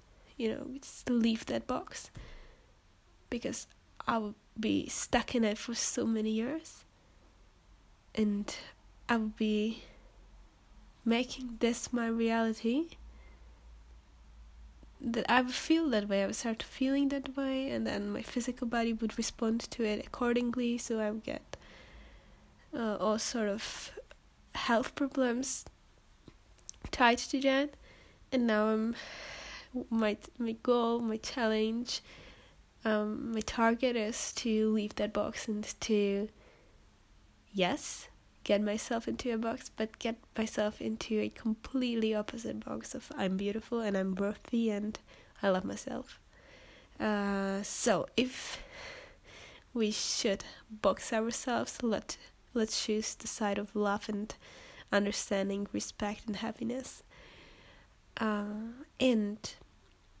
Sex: female